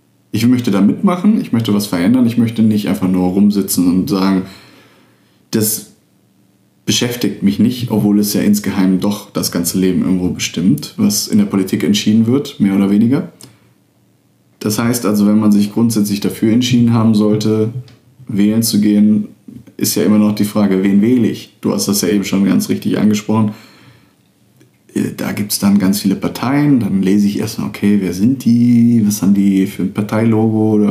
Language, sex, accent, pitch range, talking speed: German, male, German, 100-120 Hz, 180 wpm